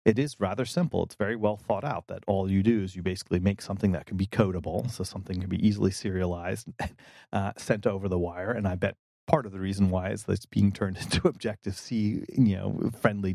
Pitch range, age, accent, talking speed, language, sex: 95-110 Hz, 30-49, American, 230 wpm, English, male